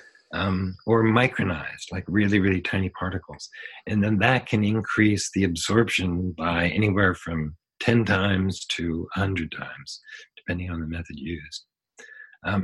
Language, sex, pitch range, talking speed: English, male, 90-125 Hz, 140 wpm